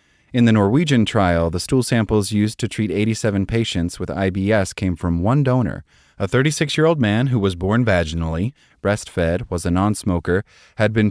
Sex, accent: male, American